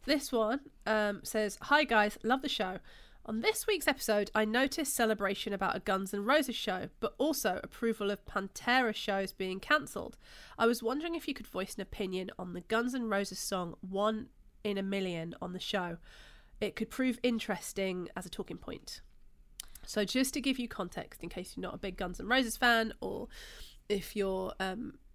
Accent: British